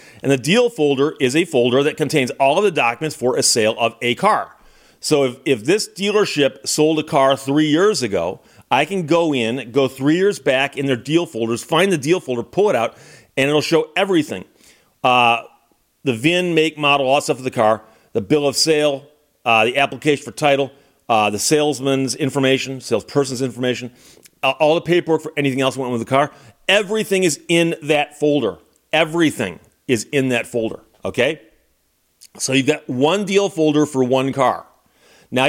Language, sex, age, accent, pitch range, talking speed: English, male, 40-59, American, 135-165 Hz, 190 wpm